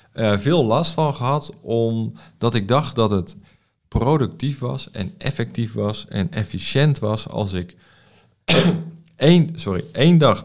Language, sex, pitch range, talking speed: Dutch, male, 105-145 Hz, 140 wpm